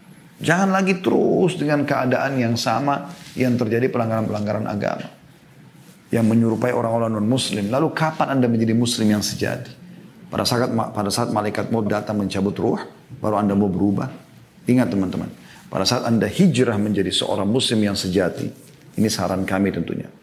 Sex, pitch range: male, 110-175 Hz